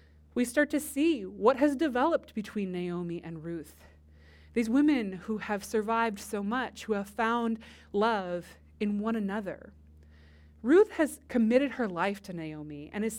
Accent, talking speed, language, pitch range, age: American, 155 wpm, English, 165-270 Hz, 20-39